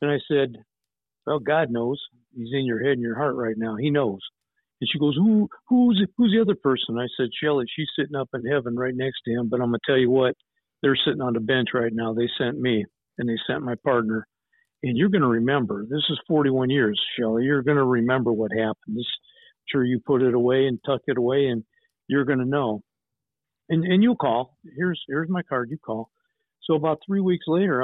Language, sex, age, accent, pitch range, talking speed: English, male, 50-69, American, 125-160 Hz, 230 wpm